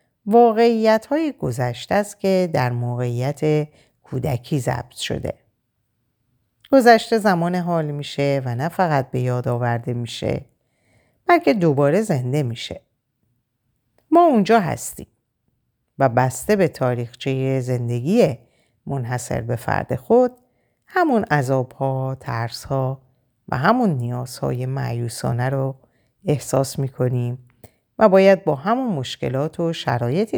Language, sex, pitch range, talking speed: Persian, female, 125-185 Hz, 105 wpm